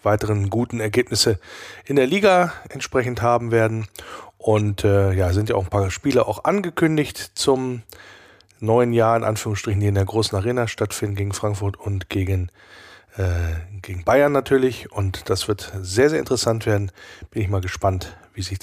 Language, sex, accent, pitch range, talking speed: German, male, German, 105-140 Hz, 165 wpm